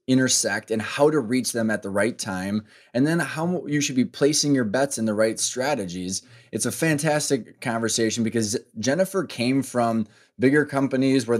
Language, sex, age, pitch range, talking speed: English, male, 20-39, 110-135 Hz, 180 wpm